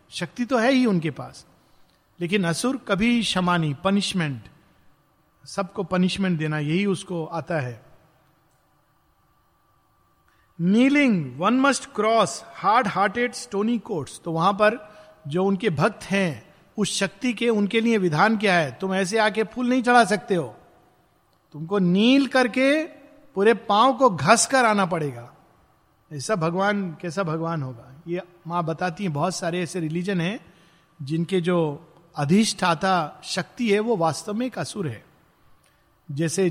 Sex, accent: male, native